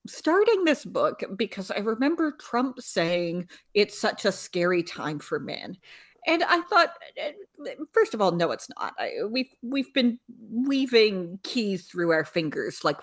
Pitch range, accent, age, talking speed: 180-285 Hz, American, 40-59, 150 wpm